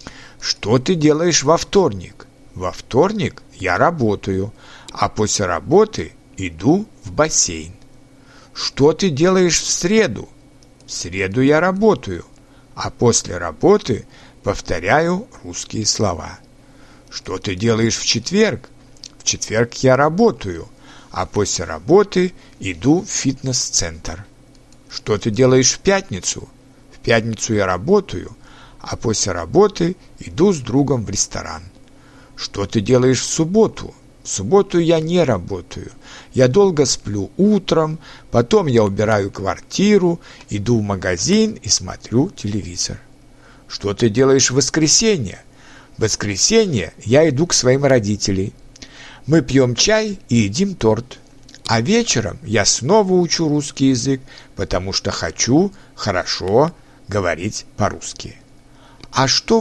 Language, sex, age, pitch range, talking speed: Russian, male, 60-79, 105-150 Hz, 120 wpm